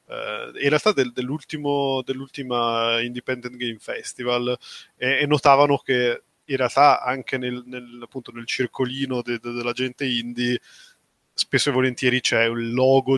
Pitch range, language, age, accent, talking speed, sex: 120-135 Hz, Italian, 20-39, native, 140 wpm, male